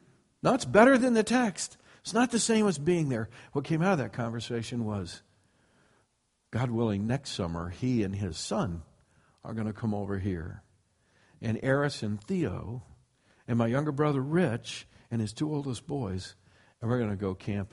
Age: 60-79